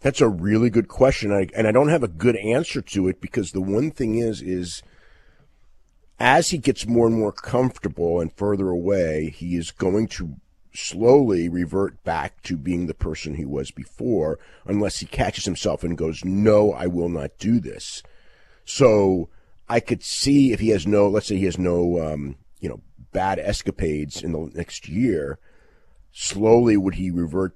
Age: 40-59